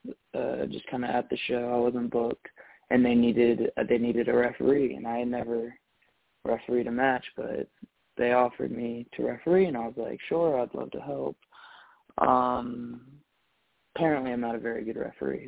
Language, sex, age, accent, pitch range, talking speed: English, male, 20-39, American, 115-130 Hz, 180 wpm